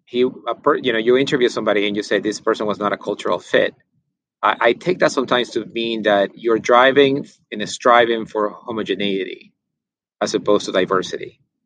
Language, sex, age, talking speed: English, male, 30-49, 180 wpm